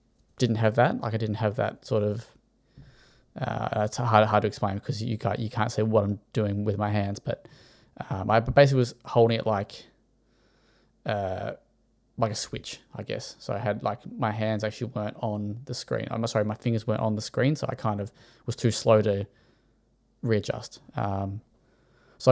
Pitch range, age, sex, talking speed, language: 105-125 Hz, 20-39, male, 195 wpm, English